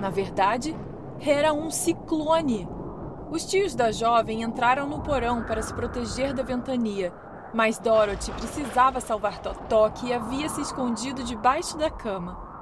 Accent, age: Brazilian, 20-39